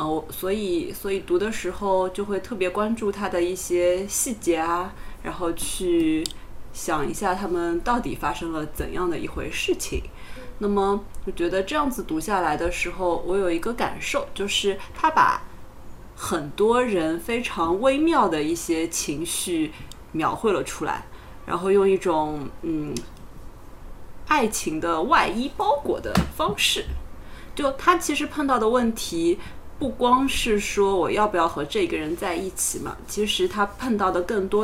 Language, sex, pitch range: Chinese, female, 175-280 Hz